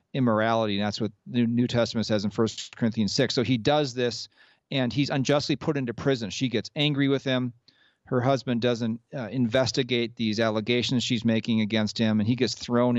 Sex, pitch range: male, 115-135 Hz